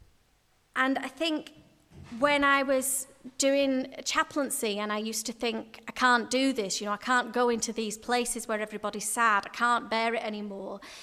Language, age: English, 30-49